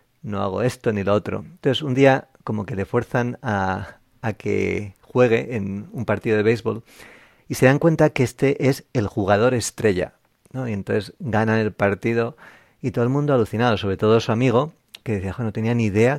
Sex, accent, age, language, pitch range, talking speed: male, Spanish, 40-59, Spanish, 100-125 Hz, 200 wpm